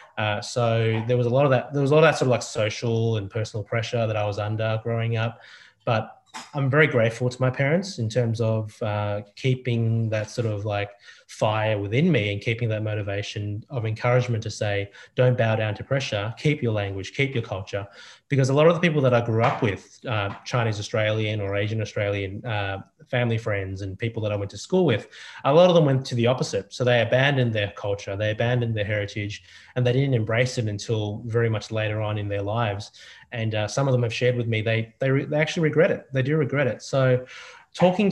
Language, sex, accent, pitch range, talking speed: English, male, Australian, 105-125 Hz, 225 wpm